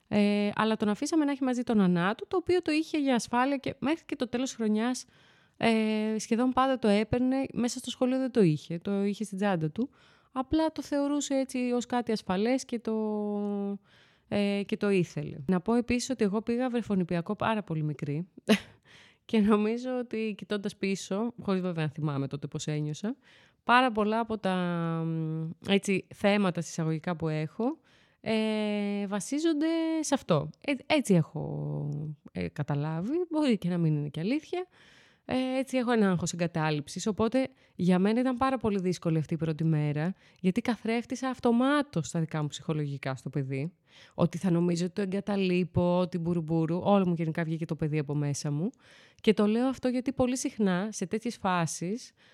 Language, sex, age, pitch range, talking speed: Greek, female, 20-39, 170-250 Hz, 170 wpm